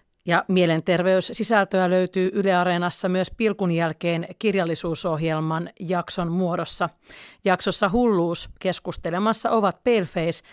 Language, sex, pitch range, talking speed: Finnish, female, 170-205 Hz, 85 wpm